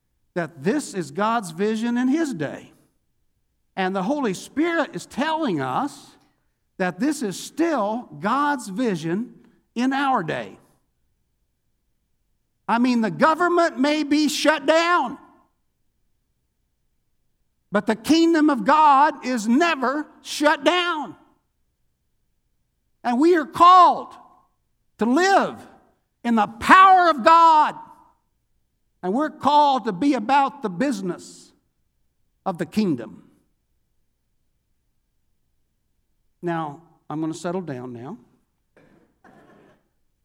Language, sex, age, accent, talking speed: English, male, 60-79, American, 105 wpm